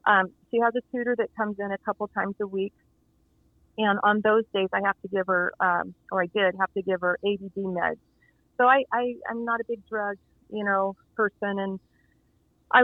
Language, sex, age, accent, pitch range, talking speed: English, female, 30-49, American, 200-245 Hz, 215 wpm